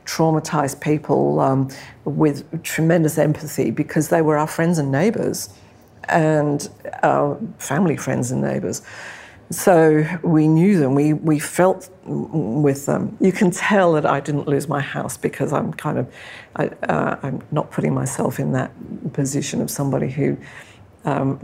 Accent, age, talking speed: British, 50-69, 150 wpm